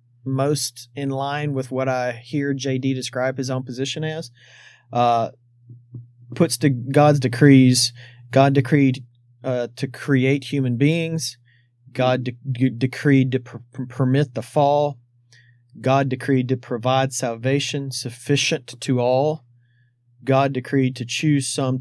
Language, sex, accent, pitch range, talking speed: English, male, American, 120-135 Hz, 120 wpm